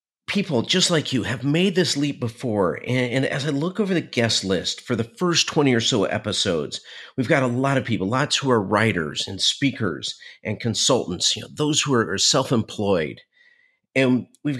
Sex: male